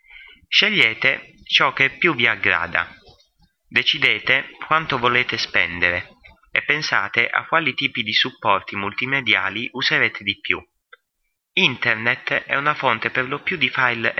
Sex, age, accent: male, 30-49, native